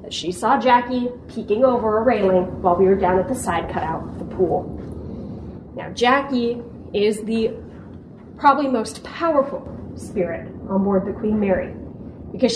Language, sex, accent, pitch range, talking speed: English, female, American, 215-275 Hz, 155 wpm